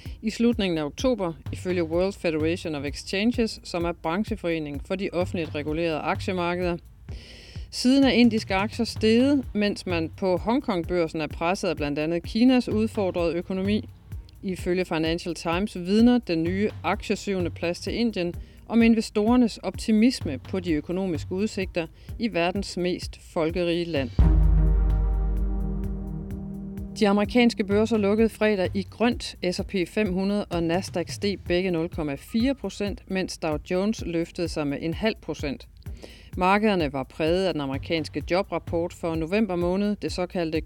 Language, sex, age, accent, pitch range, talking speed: Danish, female, 40-59, native, 165-215 Hz, 135 wpm